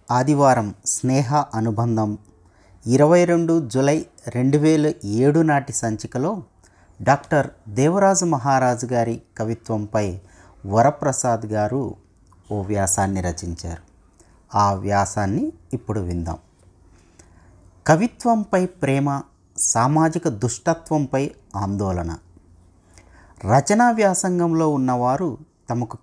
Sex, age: male, 30-49